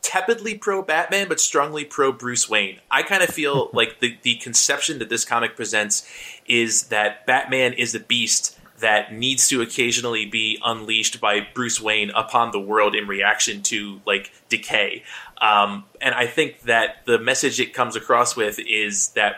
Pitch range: 110-140 Hz